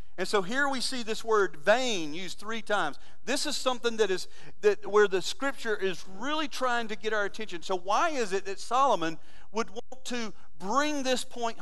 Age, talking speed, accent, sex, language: 40-59, 200 wpm, American, male, English